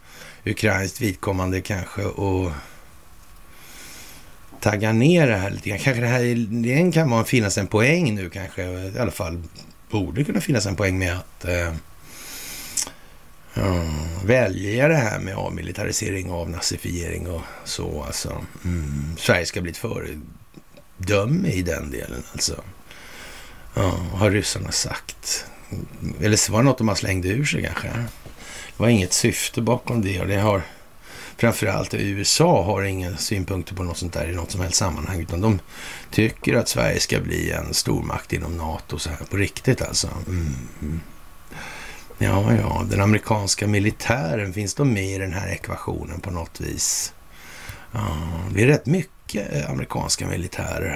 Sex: male